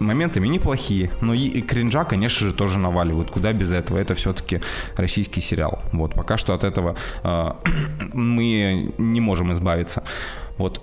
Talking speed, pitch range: 155 wpm, 95-120 Hz